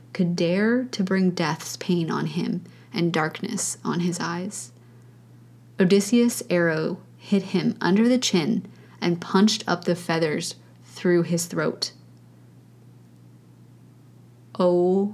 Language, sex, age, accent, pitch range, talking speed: English, female, 20-39, American, 170-210 Hz, 115 wpm